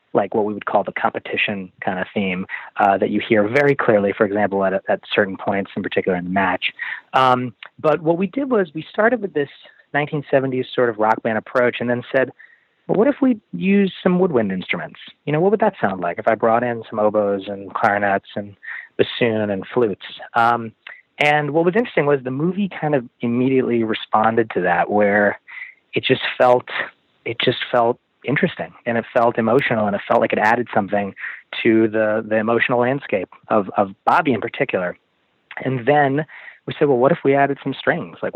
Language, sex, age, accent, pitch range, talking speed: English, male, 30-49, American, 110-150 Hz, 200 wpm